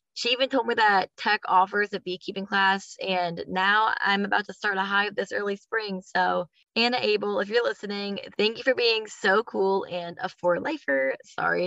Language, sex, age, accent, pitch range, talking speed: English, female, 20-39, American, 180-220 Hz, 195 wpm